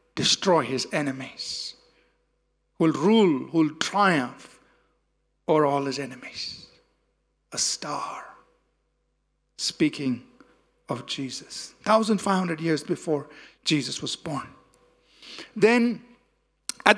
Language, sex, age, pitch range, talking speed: English, male, 50-69, 160-240 Hz, 90 wpm